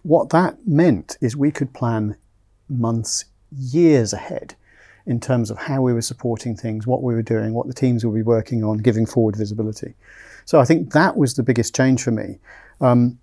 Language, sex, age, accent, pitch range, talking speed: English, male, 40-59, British, 110-135 Hz, 195 wpm